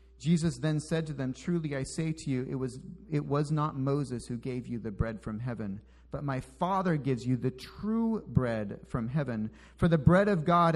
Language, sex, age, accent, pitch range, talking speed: English, male, 40-59, American, 110-165 Hz, 210 wpm